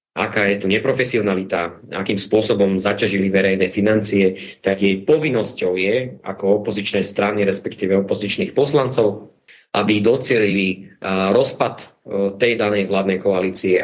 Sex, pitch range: male, 95-110 Hz